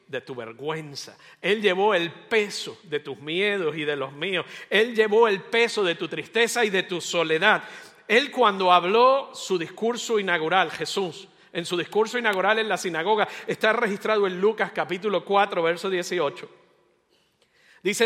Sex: male